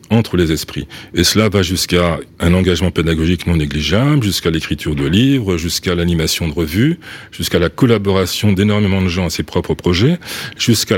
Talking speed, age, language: 170 wpm, 40-59, French